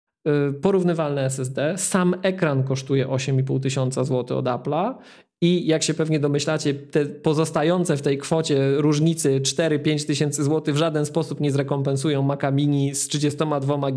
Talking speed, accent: 140 wpm, native